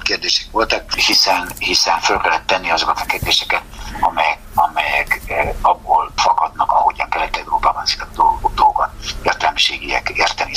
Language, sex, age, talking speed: Hungarian, male, 60-79, 120 wpm